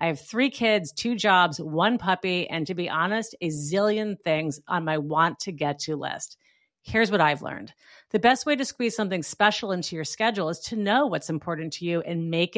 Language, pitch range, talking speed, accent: English, 170-230 Hz, 215 wpm, American